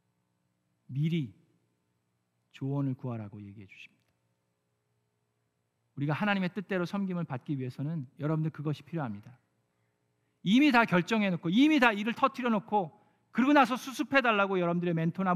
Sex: male